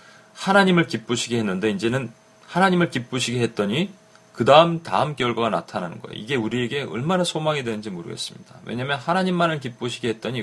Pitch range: 110-145 Hz